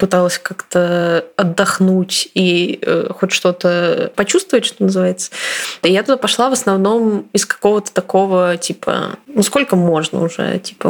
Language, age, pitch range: Russian, 20-39, 180-210 Hz